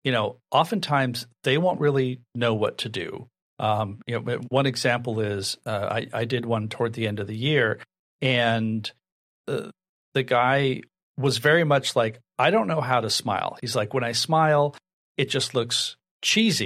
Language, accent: English, American